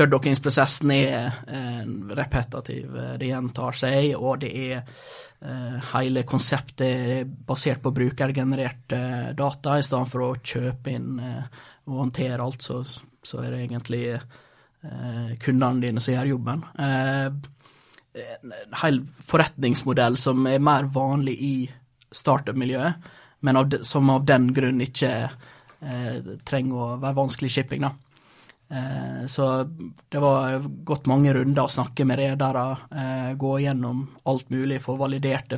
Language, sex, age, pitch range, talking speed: English, male, 20-39, 125-140 Hz, 150 wpm